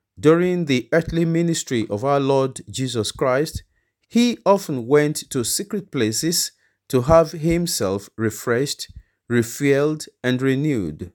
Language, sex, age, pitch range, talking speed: English, male, 40-59, 115-155 Hz, 120 wpm